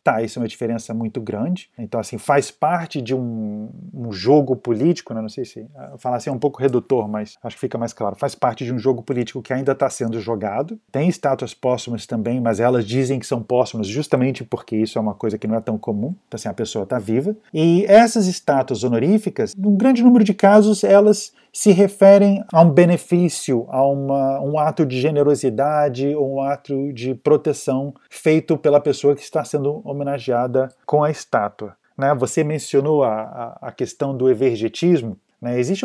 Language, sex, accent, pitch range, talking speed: Portuguese, male, Brazilian, 115-150 Hz, 190 wpm